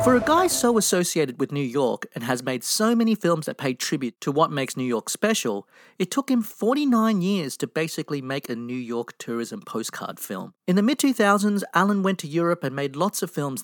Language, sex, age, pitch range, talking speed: English, male, 30-49, 130-195 Hz, 215 wpm